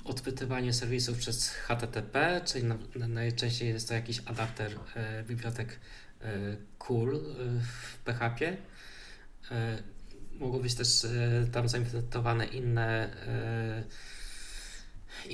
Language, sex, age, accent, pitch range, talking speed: Polish, male, 20-39, native, 115-130 Hz, 115 wpm